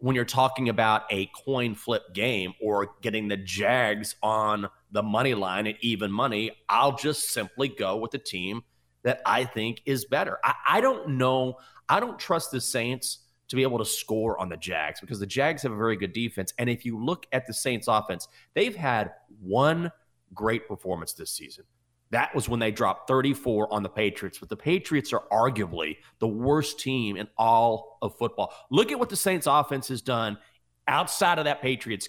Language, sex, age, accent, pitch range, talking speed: English, male, 30-49, American, 110-140 Hz, 195 wpm